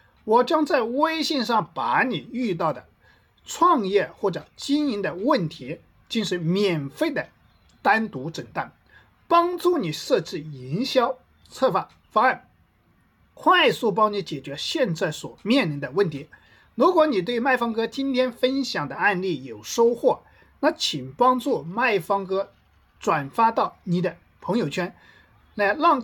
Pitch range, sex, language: 170-270 Hz, male, Chinese